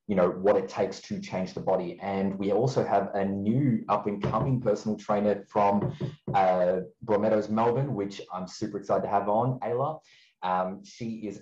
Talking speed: 175 wpm